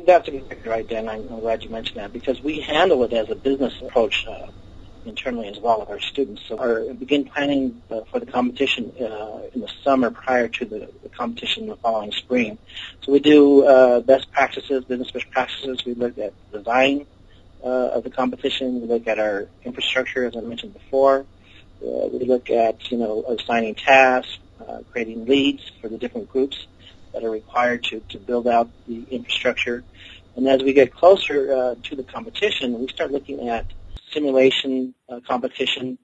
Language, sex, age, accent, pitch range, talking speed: English, male, 40-59, American, 110-135 Hz, 185 wpm